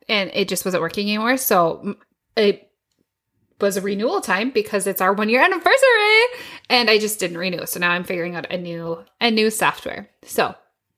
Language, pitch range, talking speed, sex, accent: English, 185-255 Hz, 180 wpm, female, American